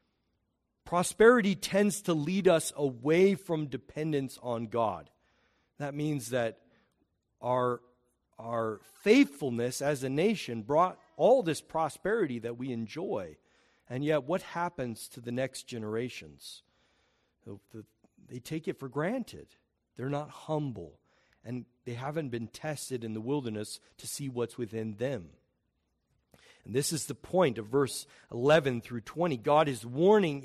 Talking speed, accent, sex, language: 135 wpm, American, male, English